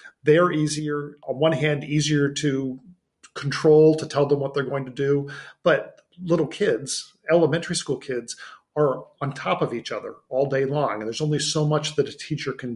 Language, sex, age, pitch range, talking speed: English, male, 40-59, 130-150 Hz, 190 wpm